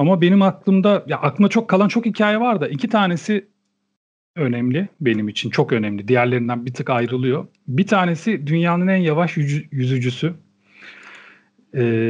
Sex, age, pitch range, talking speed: male, 40-59, 135-190 Hz, 145 wpm